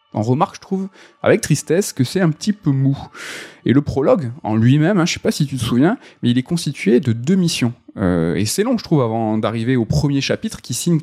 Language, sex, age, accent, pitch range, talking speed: French, male, 20-39, French, 115-165 Hz, 250 wpm